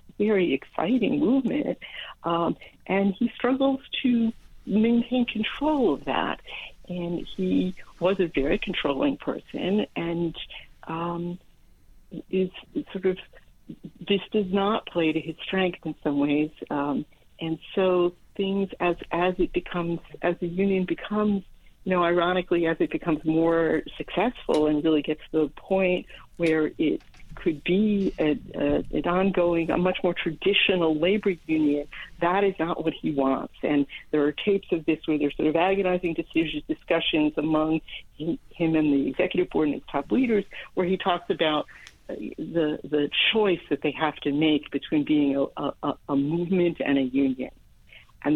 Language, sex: English, female